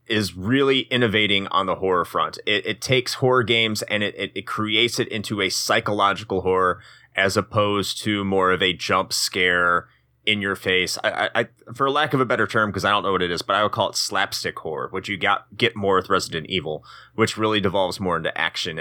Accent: American